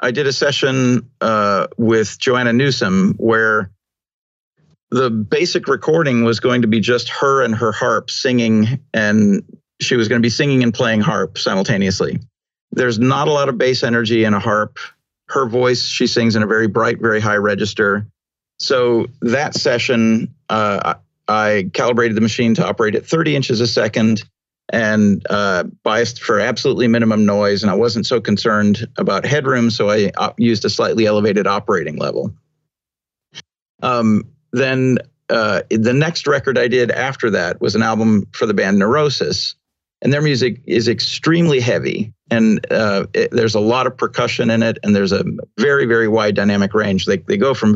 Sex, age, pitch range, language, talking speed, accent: male, 40-59, 110-130 Hz, English, 170 wpm, American